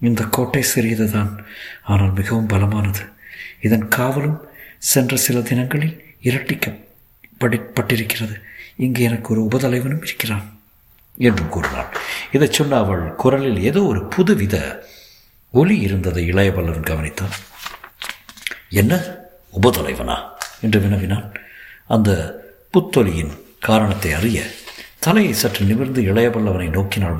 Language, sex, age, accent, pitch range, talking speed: Tamil, male, 60-79, native, 105-130 Hz, 95 wpm